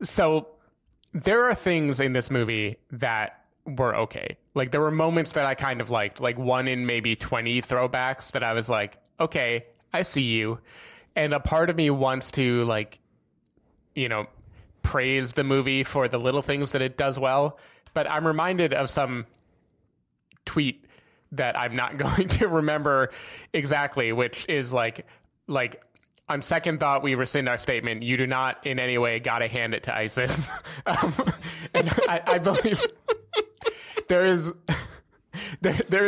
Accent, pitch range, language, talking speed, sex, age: American, 120-155 Hz, English, 165 wpm, male, 20-39